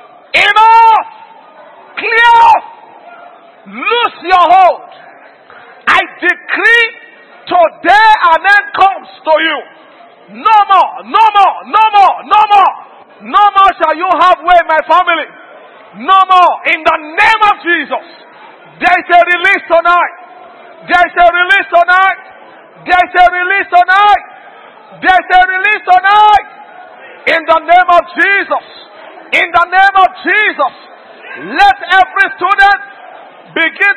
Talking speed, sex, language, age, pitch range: 125 wpm, male, English, 50-69, 340-395 Hz